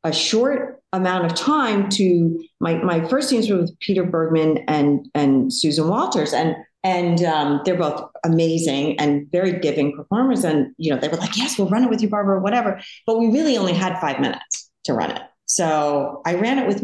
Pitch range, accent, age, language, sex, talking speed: 150-210 Hz, American, 40-59, English, female, 205 wpm